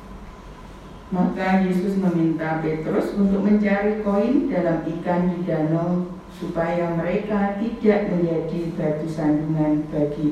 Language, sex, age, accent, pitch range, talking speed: Indonesian, female, 40-59, native, 165-200 Hz, 105 wpm